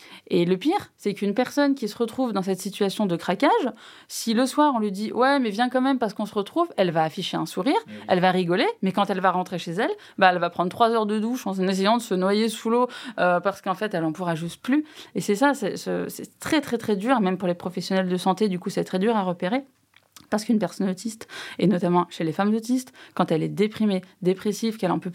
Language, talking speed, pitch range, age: French, 260 wpm, 180-230 Hz, 20-39